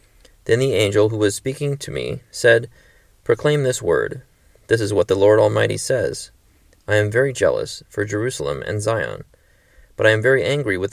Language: English